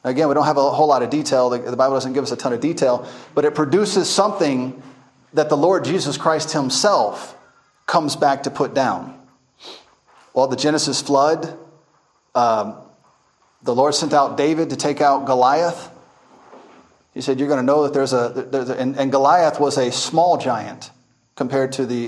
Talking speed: 180 wpm